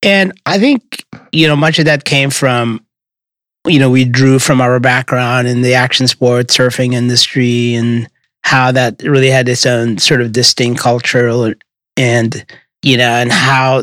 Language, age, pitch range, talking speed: English, 30-49, 120-140 Hz, 170 wpm